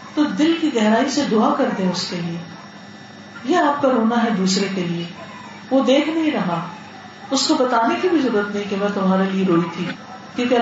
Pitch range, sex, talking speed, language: 200-260 Hz, female, 205 wpm, Urdu